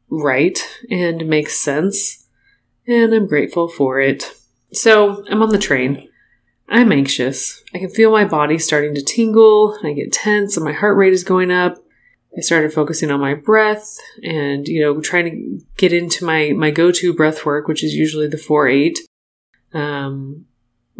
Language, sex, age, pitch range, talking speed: English, female, 30-49, 145-190 Hz, 165 wpm